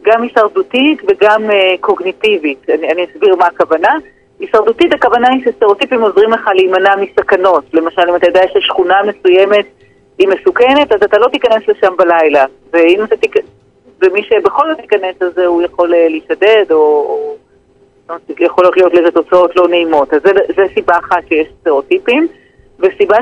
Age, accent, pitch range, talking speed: 40-59, native, 180-290 Hz, 140 wpm